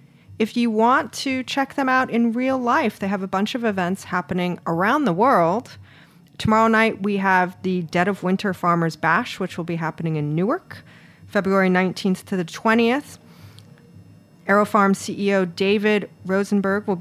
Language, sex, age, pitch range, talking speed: English, female, 40-59, 175-220 Hz, 160 wpm